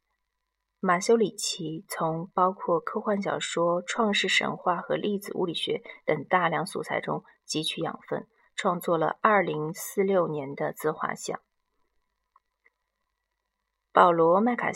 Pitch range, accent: 175-275 Hz, native